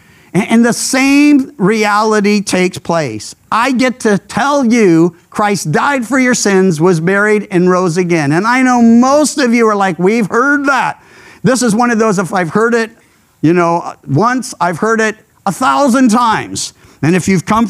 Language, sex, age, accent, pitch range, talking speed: English, male, 50-69, American, 185-245 Hz, 185 wpm